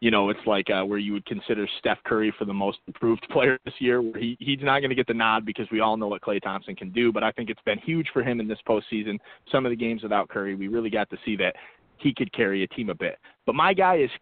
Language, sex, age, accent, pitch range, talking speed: English, male, 30-49, American, 100-125 Hz, 295 wpm